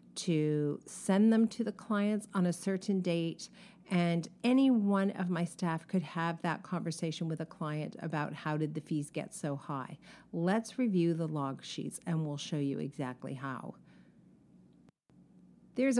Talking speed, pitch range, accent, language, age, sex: 160 wpm, 160-205 Hz, American, English, 40-59, female